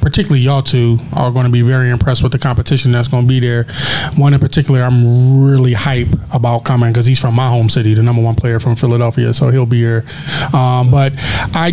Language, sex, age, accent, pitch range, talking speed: English, male, 20-39, American, 135-160 Hz, 225 wpm